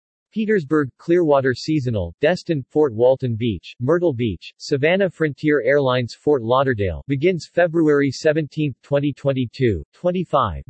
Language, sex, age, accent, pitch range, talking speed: English, male, 40-59, American, 120-155 Hz, 100 wpm